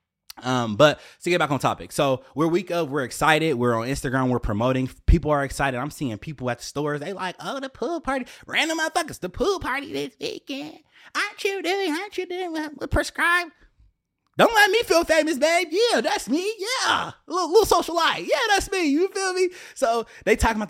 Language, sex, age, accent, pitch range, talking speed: English, male, 20-39, American, 125-210 Hz, 210 wpm